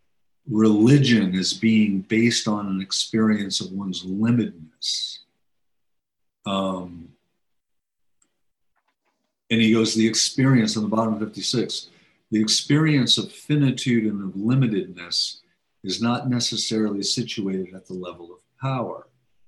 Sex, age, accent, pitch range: male, 50-69, American, 100-125 Hz